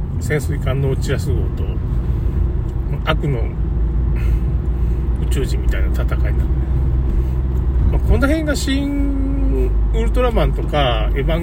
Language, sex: Japanese, male